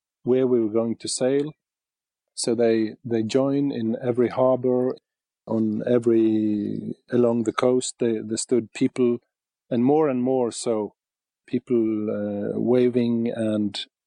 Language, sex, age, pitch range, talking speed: English, male, 40-59, 115-130 Hz, 130 wpm